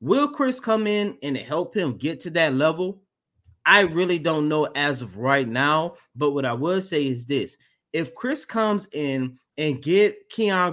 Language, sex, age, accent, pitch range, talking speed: English, male, 30-49, American, 140-180 Hz, 185 wpm